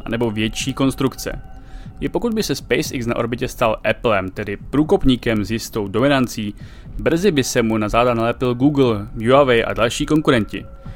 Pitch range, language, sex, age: 110-140 Hz, Czech, male, 30-49